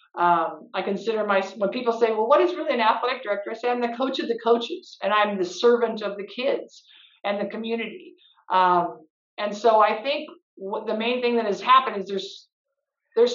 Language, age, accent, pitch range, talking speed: English, 50-69, American, 200-260 Hz, 210 wpm